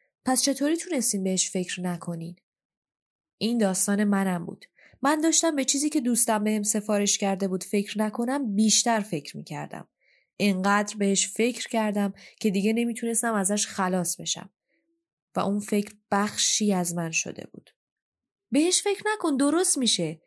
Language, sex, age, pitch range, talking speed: Persian, female, 10-29, 185-240 Hz, 140 wpm